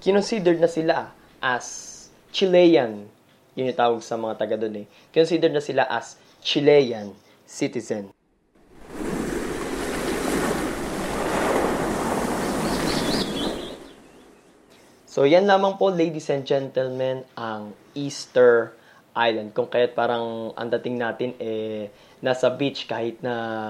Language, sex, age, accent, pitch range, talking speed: Filipino, male, 20-39, native, 110-145 Hz, 95 wpm